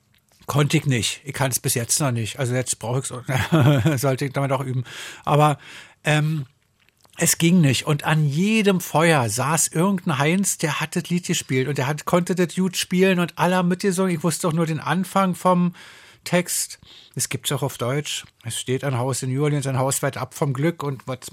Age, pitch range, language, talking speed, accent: 50-69, 135-170 Hz, German, 215 wpm, German